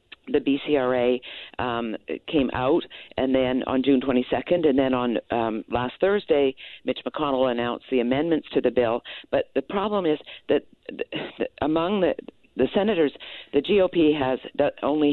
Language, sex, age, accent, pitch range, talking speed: English, female, 50-69, American, 125-155 Hz, 150 wpm